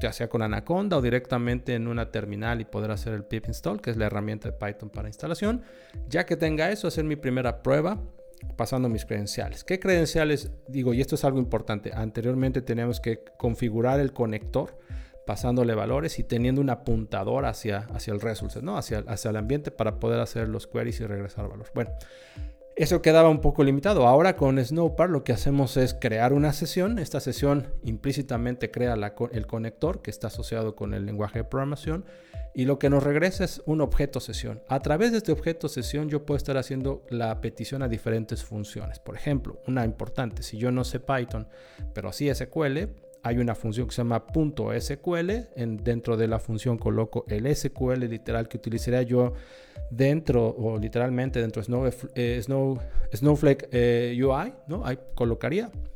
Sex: male